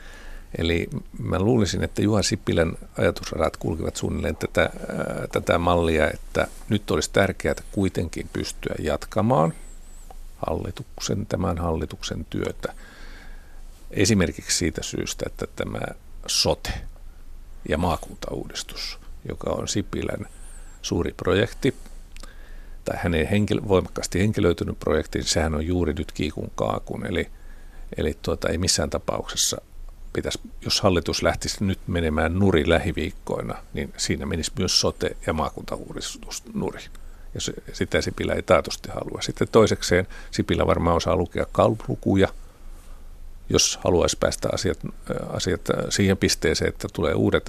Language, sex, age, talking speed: Finnish, male, 50-69, 120 wpm